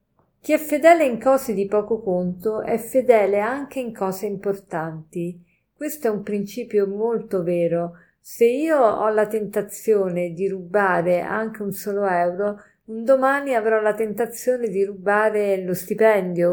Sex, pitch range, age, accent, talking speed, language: female, 190-235 Hz, 50-69, native, 145 wpm, Italian